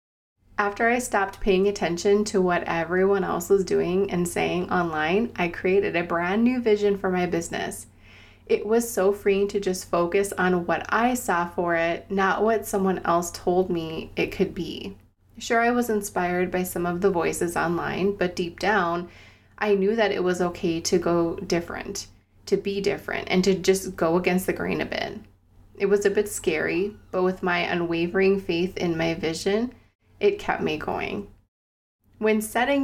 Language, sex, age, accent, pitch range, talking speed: English, female, 20-39, American, 175-205 Hz, 180 wpm